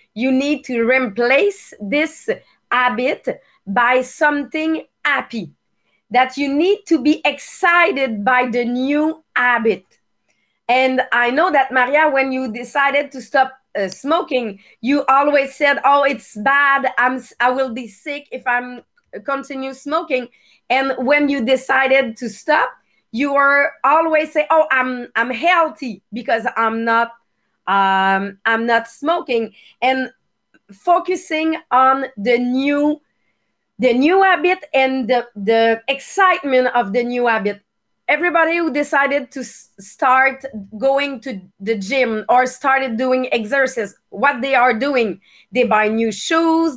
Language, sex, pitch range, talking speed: English, female, 240-300 Hz, 135 wpm